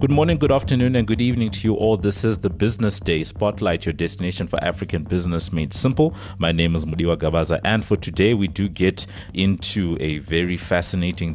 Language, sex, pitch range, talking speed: English, male, 80-95 Hz, 200 wpm